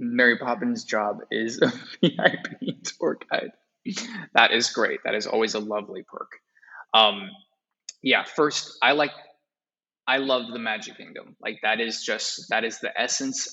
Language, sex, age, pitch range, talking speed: English, male, 20-39, 120-150 Hz, 155 wpm